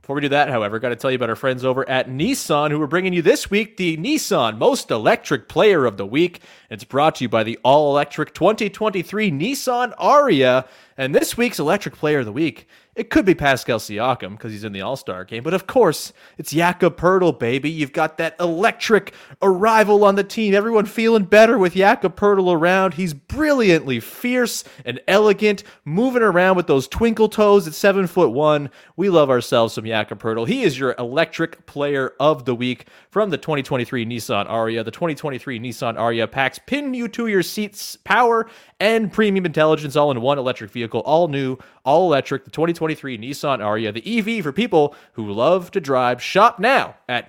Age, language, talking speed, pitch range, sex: 30-49, English, 195 wpm, 125-195 Hz, male